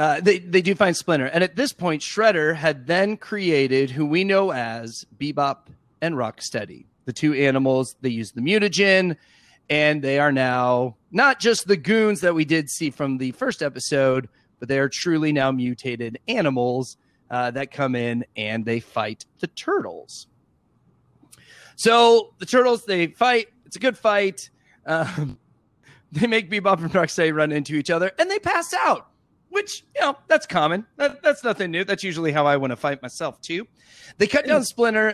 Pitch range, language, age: 130-190 Hz, English, 30-49